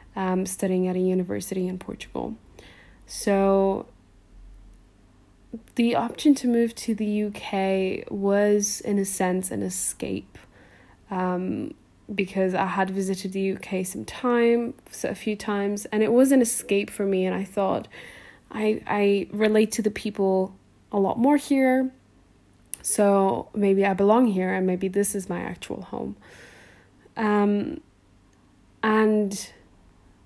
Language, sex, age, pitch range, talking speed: English, female, 10-29, 185-215 Hz, 135 wpm